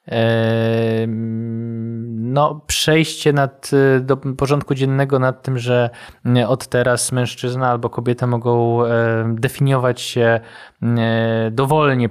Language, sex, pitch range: Polish, male, 115-130 Hz